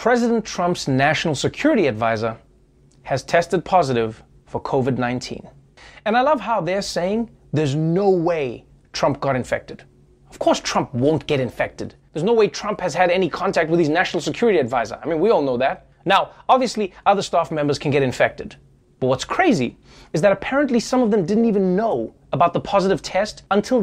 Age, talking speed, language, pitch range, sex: 20-39, 180 wpm, English, 155-230 Hz, male